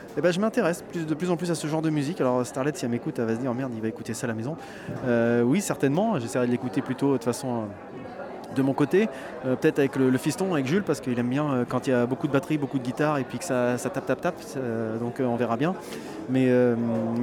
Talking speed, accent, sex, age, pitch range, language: 295 wpm, French, male, 20-39, 125-165 Hz, French